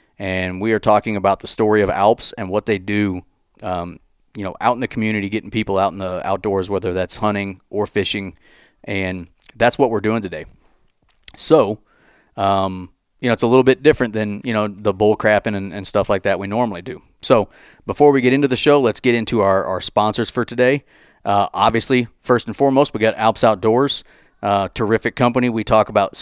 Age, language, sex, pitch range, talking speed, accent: 30-49, English, male, 100-125 Hz, 205 wpm, American